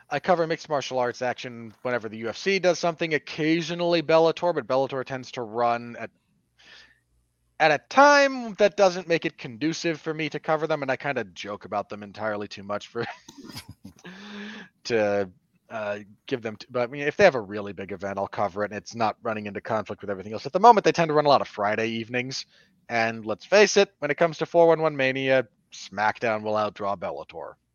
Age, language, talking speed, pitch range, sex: 30-49, English, 210 wpm, 115-170 Hz, male